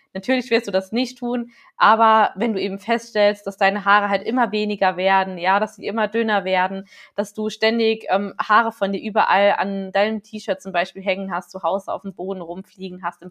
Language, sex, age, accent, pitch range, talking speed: German, female, 20-39, German, 195-240 Hz, 210 wpm